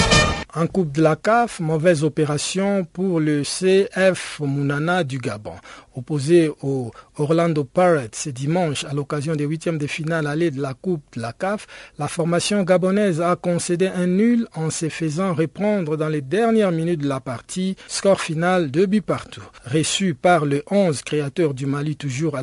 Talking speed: 175 wpm